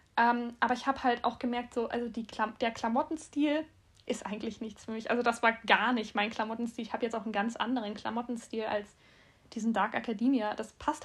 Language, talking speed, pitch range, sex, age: German, 210 wpm, 235-280 Hz, female, 10-29